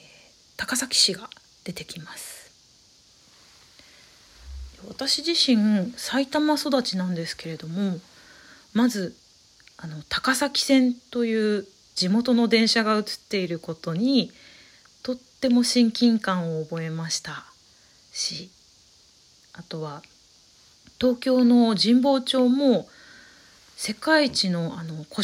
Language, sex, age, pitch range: Japanese, female, 30-49, 175-250 Hz